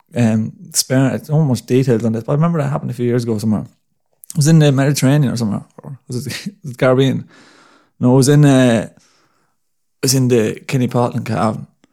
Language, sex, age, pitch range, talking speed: English, male, 20-39, 115-140 Hz, 210 wpm